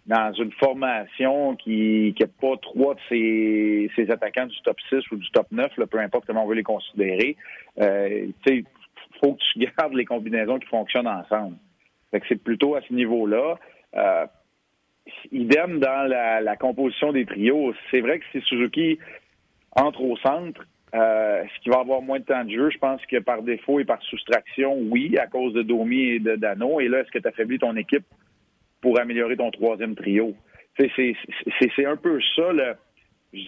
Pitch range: 110-140 Hz